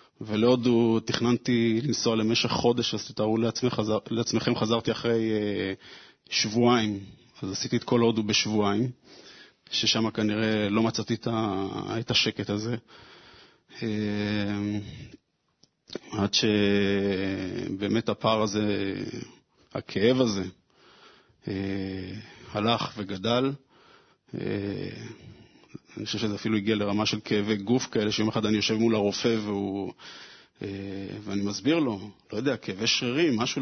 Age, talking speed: 20-39, 115 wpm